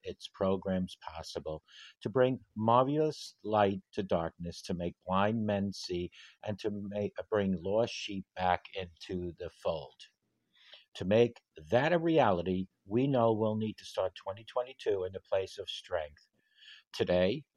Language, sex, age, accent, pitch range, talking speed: English, male, 50-69, American, 90-115 Hz, 140 wpm